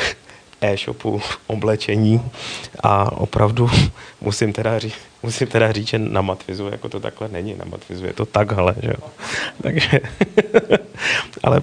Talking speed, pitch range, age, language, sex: 130 wpm, 95-110 Hz, 30-49, Czech, male